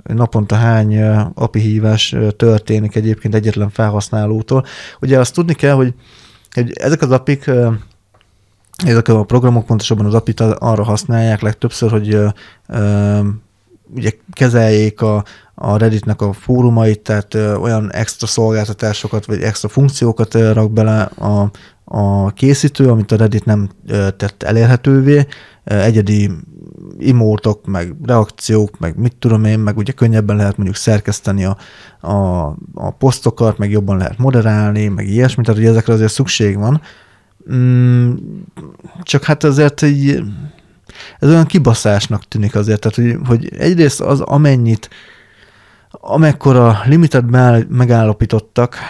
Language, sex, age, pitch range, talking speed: Hungarian, male, 20-39, 105-125 Hz, 125 wpm